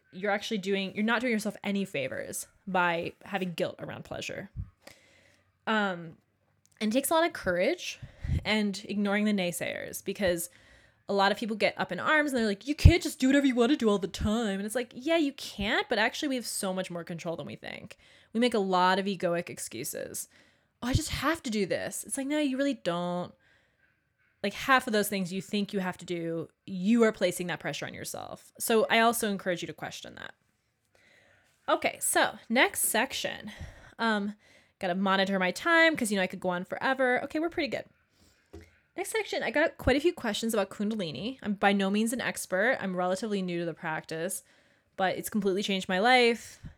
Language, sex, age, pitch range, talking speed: English, female, 20-39, 180-245 Hz, 210 wpm